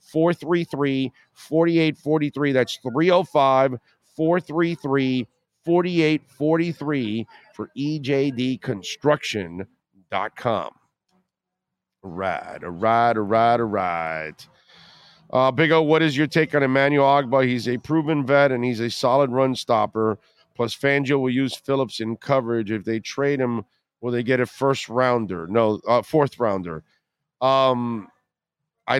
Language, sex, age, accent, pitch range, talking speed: English, male, 50-69, American, 120-150 Hz, 120 wpm